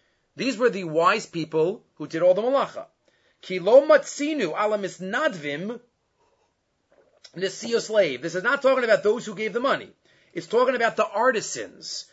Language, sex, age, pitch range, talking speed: English, male, 30-49, 175-250 Hz, 150 wpm